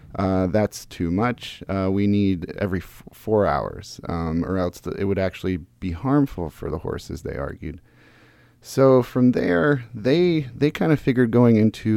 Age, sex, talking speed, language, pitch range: 30-49, male, 175 wpm, English, 95-110 Hz